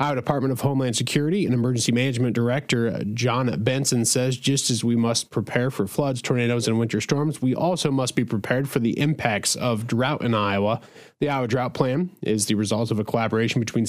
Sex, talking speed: male, 200 wpm